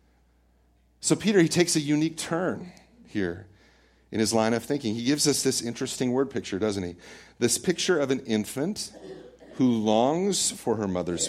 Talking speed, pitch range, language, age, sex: 170 wpm, 105-145 Hz, English, 40-59, male